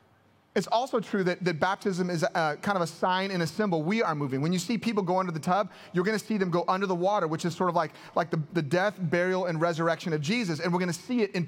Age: 30-49